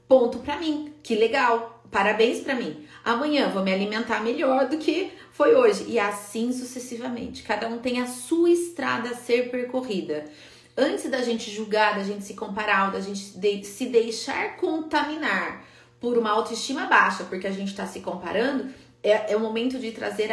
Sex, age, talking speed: female, 30-49, 170 wpm